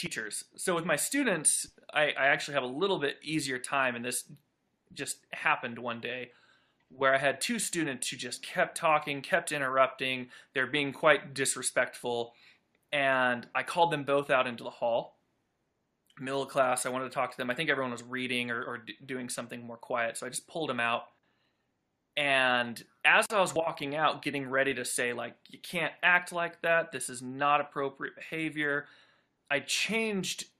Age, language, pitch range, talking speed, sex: 20-39, English, 125-155 Hz, 180 wpm, male